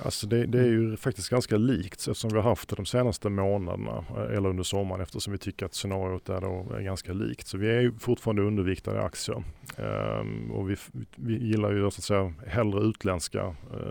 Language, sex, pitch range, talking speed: Swedish, male, 95-115 Hz, 205 wpm